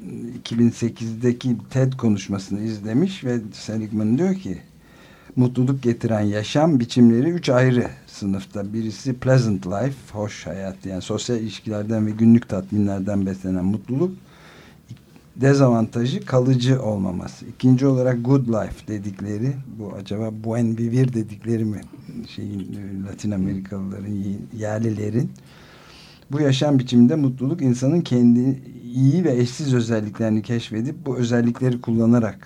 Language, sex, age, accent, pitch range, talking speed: Turkish, male, 60-79, native, 100-125 Hz, 110 wpm